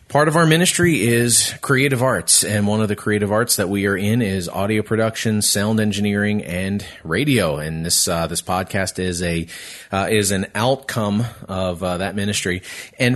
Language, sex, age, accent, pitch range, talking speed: English, male, 30-49, American, 90-110 Hz, 180 wpm